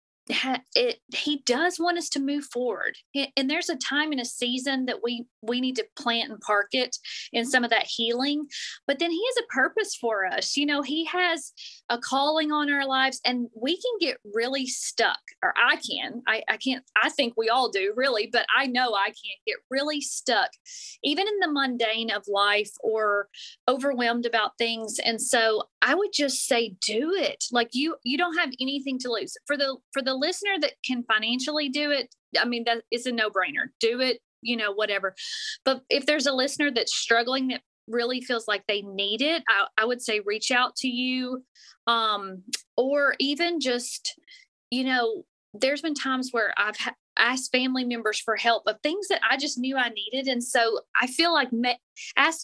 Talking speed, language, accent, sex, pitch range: 200 wpm, English, American, female, 230-290 Hz